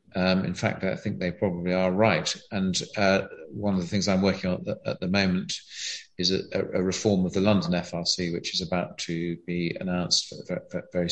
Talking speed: 195 wpm